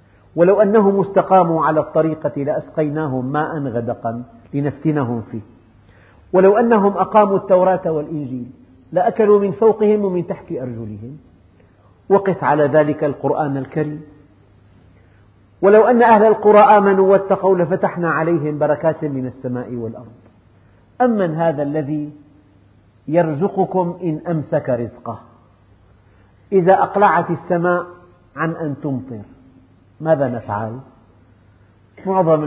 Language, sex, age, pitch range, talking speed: Arabic, male, 50-69, 115-175 Hz, 100 wpm